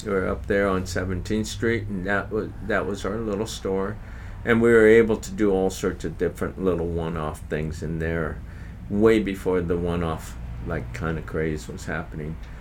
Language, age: English, 50-69